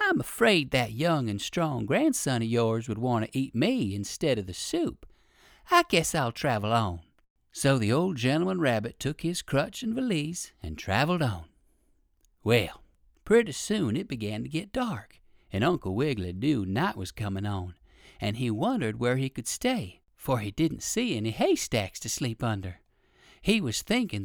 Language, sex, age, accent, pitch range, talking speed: English, male, 50-69, American, 105-175 Hz, 175 wpm